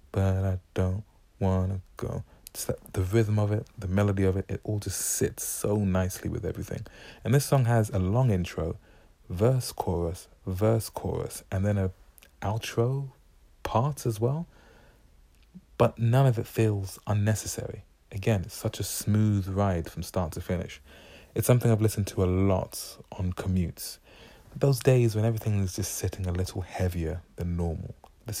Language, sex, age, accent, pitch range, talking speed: English, male, 30-49, British, 90-110 Hz, 170 wpm